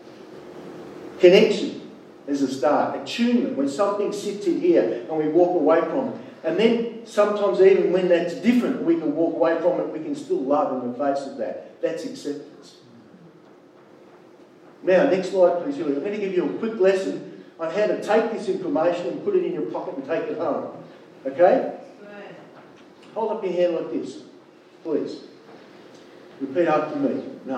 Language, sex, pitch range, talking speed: English, male, 165-235 Hz, 175 wpm